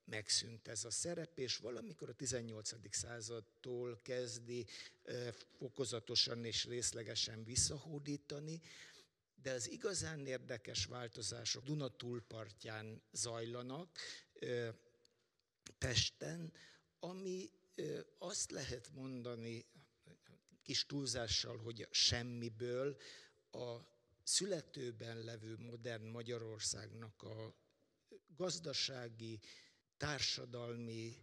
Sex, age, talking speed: male, 60-79, 75 wpm